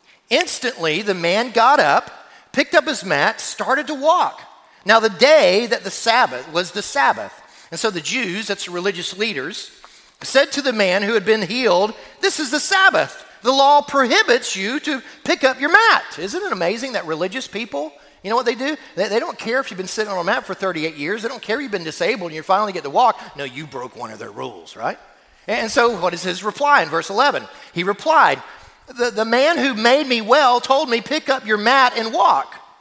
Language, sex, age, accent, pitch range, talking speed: English, male, 40-59, American, 195-270 Hz, 225 wpm